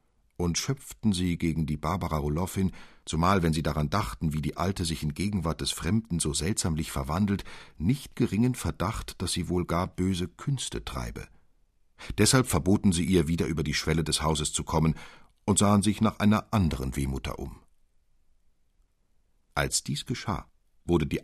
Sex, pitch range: male, 75-95 Hz